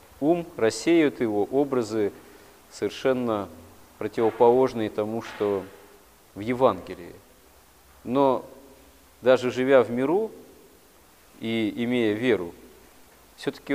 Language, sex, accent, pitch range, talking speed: Russian, male, native, 110-140 Hz, 85 wpm